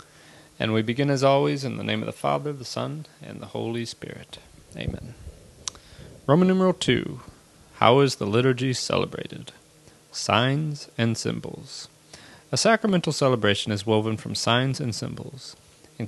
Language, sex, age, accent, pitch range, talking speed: English, male, 30-49, American, 110-145 Hz, 145 wpm